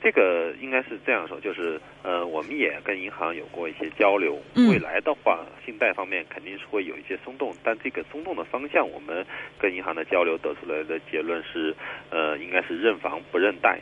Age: 40-59